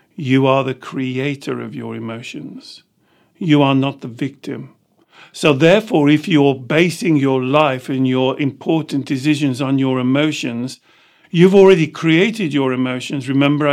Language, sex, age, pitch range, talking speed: English, male, 50-69, 135-160 Hz, 140 wpm